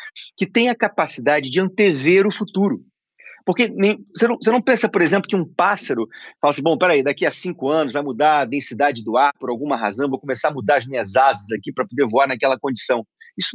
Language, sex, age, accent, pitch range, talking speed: Portuguese, male, 40-59, Brazilian, 140-220 Hz, 220 wpm